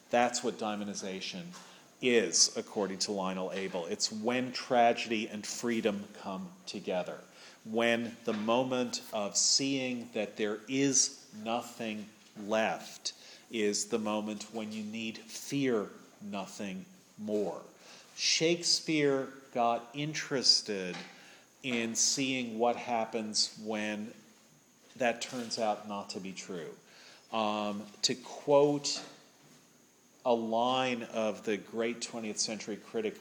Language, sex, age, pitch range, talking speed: English, male, 40-59, 105-125 Hz, 110 wpm